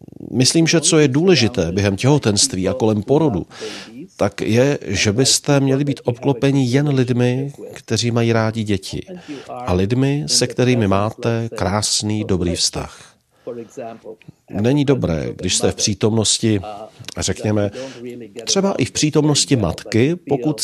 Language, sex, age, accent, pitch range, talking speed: Czech, male, 40-59, native, 100-130 Hz, 130 wpm